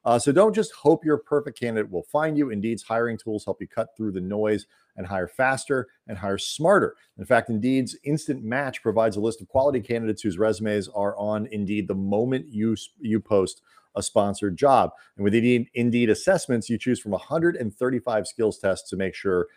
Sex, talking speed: male, 195 wpm